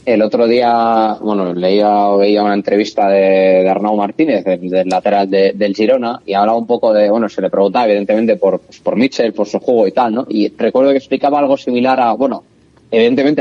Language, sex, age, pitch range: Spanish, male, 20-39, 105-135 Hz